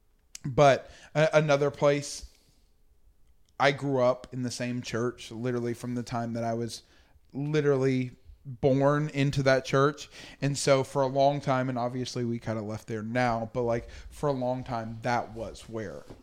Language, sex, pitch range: English, male, 115-140 Hz